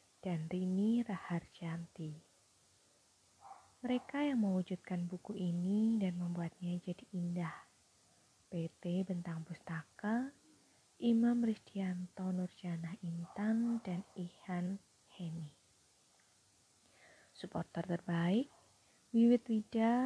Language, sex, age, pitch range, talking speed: Indonesian, female, 20-39, 175-215 Hz, 80 wpm